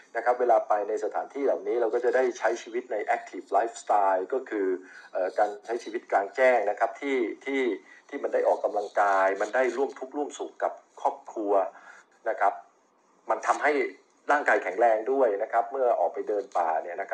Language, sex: Thai, male